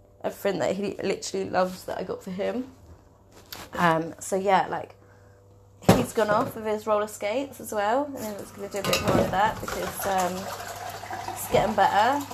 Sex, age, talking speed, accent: female, 20-39, 190 wpm, British